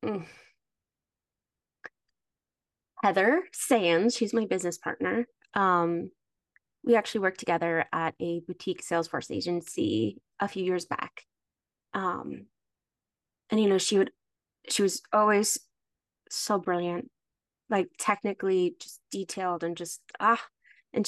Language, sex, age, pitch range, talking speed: English, female, 20-39, 175-205 Hz, 110 wpm